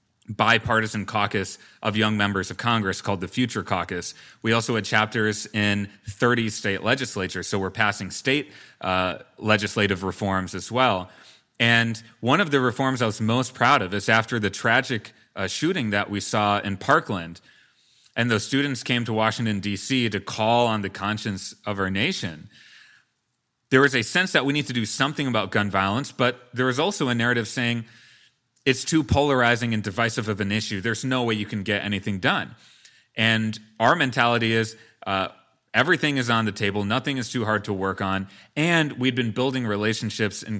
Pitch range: 100-125 Hz